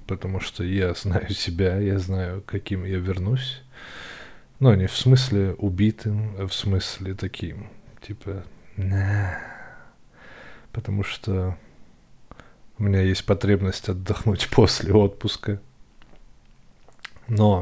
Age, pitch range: 20-39, 95-105 Hz